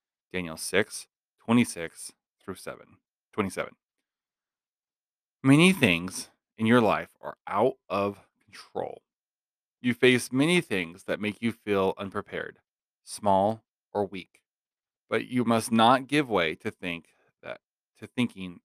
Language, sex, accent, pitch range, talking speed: English, male, American, 95-120 Hz, 115 wpm